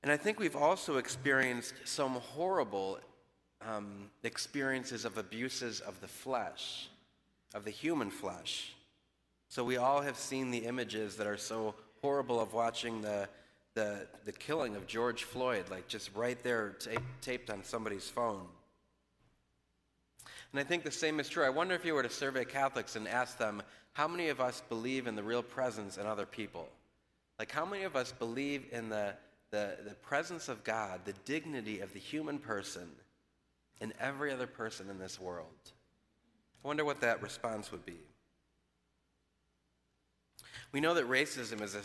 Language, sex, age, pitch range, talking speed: English, male, 30-49, 100-130 Hz, 170 wpm